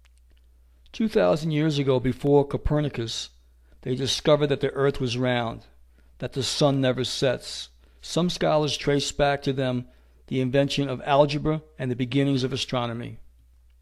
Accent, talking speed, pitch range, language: American, 140 wpm, 105-140 Hz, English